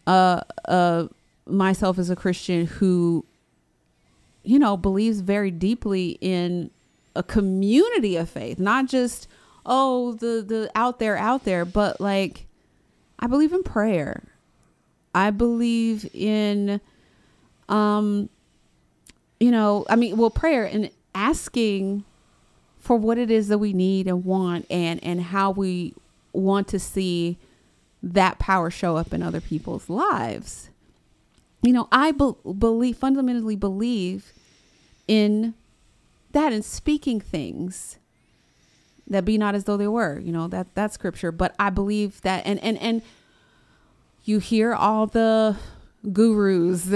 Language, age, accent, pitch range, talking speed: English, 30-49, American, 185-230 Hz, 135 wpm